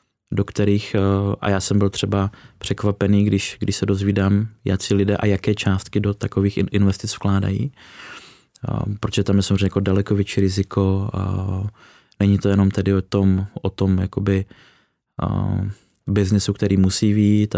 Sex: male